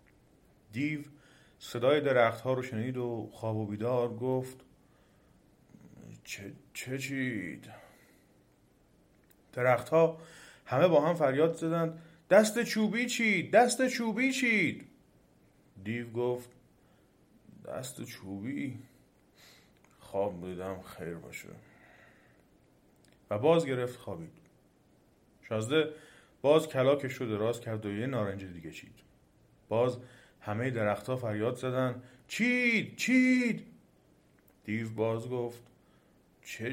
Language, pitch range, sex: Persian, 115-170 Hz, male